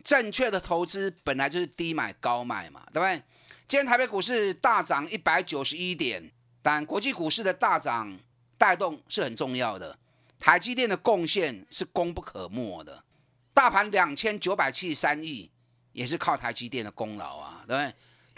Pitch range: 140-210 Hz